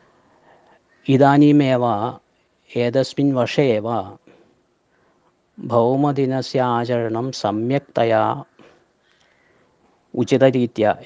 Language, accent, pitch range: Malayalam, native, 115-125 Hz